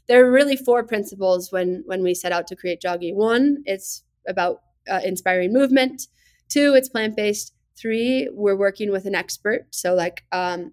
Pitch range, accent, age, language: 185-230 Hz, American, 20-39, English